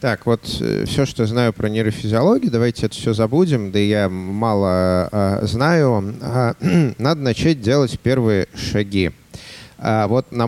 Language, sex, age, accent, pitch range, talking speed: Russian, male, 30-49, native, 110-135 Hz, 155 wpm